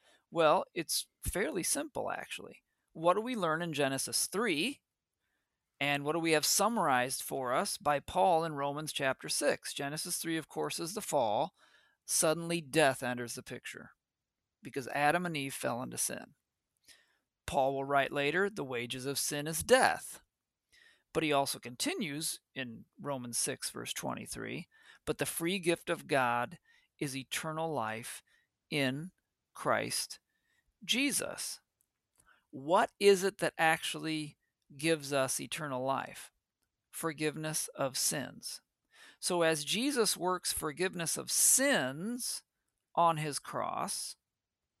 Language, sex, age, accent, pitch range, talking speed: English, male, 40-59, American, 140-180 Hz, 130 wpm